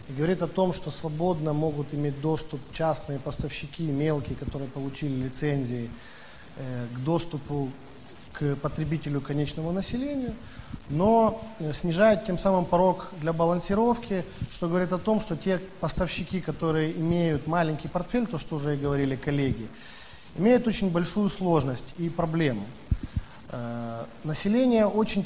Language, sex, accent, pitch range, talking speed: Ukrainian, male, native, 145-185 Hz, 125 wpm